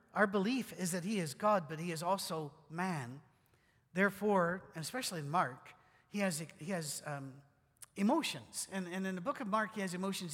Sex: male